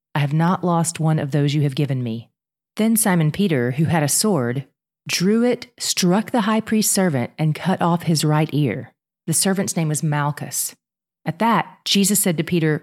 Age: 40-59